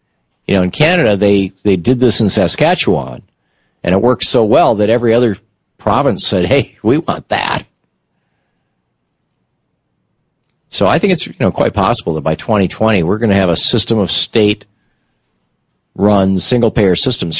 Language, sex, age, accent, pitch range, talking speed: English, male, 50-69, American, 85-130 Hz, 160 wpm